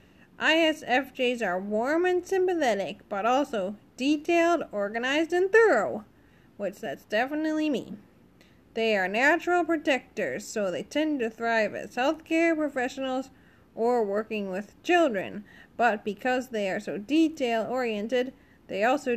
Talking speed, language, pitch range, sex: 120 wpm, English, 220-295 Hz, female